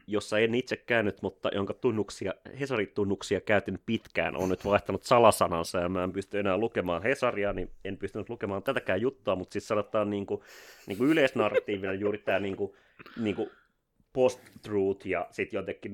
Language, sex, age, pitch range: Finnish, male, 30-49, 95-110 Hz